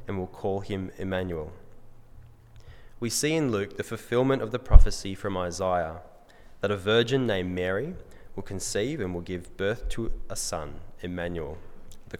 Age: 20-39